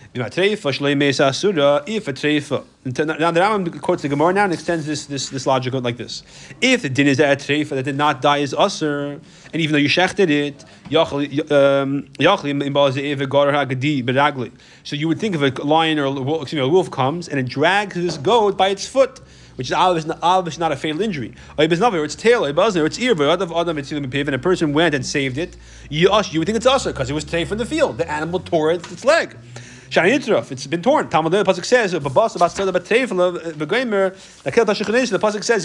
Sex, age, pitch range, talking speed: male, 30-49, 145-195 Hz, 170 wpm